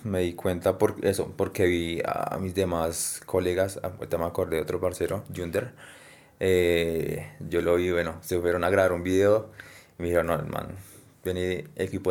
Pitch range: 90-110 Hz